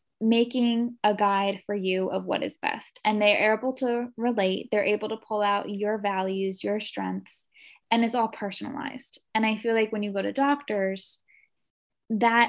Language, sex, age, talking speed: English, female, 10-29, 180 wpm